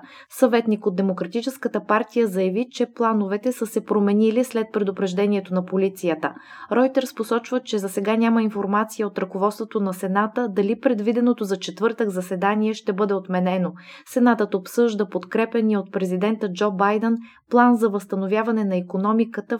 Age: 20-39